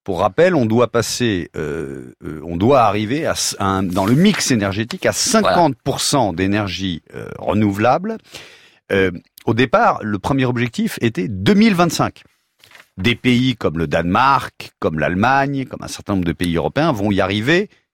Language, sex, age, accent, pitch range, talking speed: French, male, 40-59, French, 90-125 Hz, 150 wpm